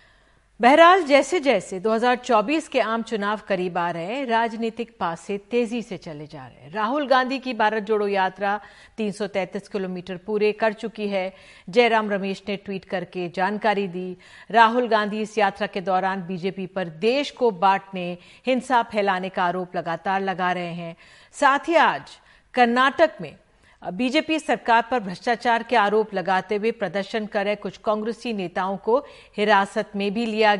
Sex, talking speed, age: female, 160 wpm, 50-69